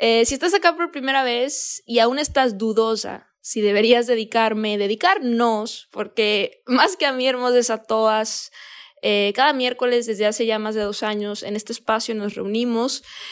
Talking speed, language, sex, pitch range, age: 170 wpm, Spanish, female, 210-260 Hz, 20-39